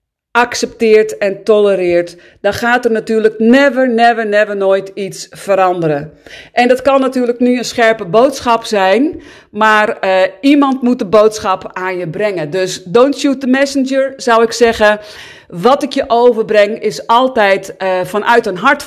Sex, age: female, 40-59